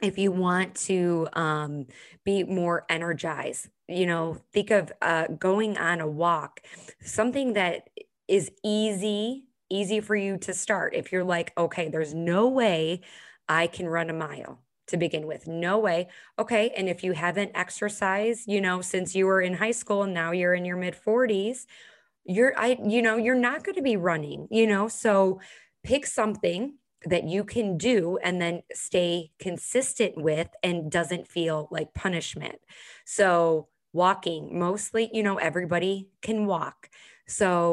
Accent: American